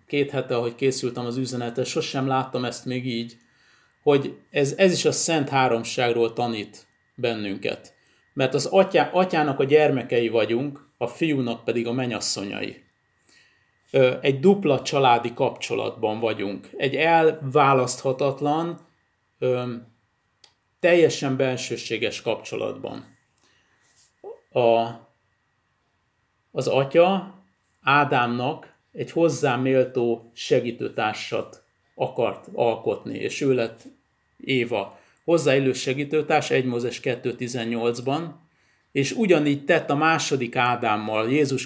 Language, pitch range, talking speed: Hungarian, 120-150 Hz, 95 wpm